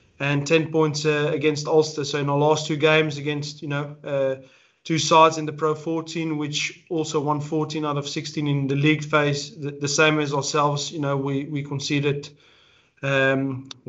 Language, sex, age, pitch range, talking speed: English, male, 20-39, 145-155 Hz, 190 wpm